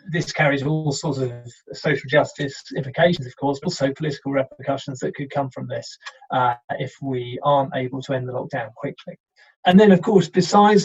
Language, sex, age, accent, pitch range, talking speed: English, male, 30-49, British, 135-150 Hz, 190 wpm